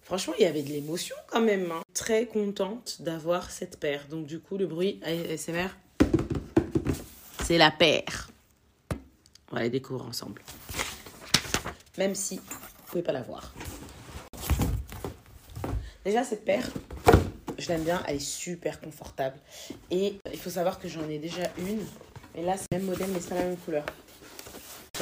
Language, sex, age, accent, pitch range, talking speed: French, female, 30-49, French, 145-190 Hz, 160 wpm